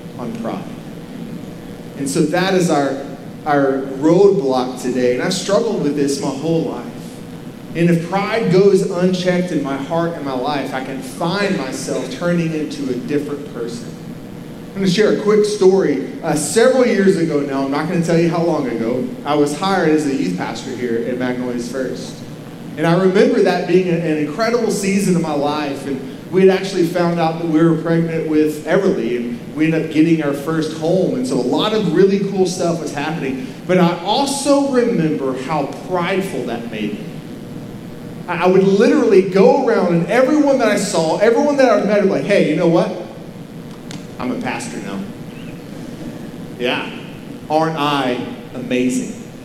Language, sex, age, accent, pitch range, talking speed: English, male, 30-49, American, 150-195 Hz, 180 wpm